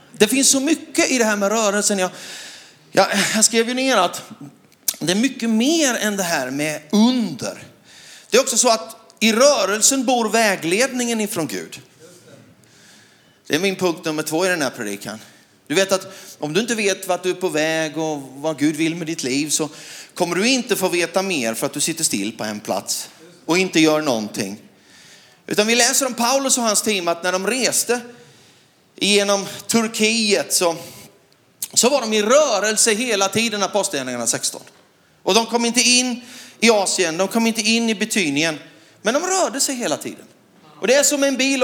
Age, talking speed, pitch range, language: 30-49, 195 wpm, 180-245 Hz, Swedish